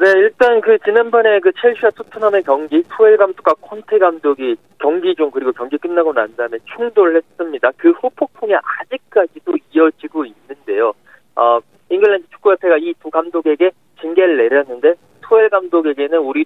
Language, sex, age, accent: Korean, male, 40-59, native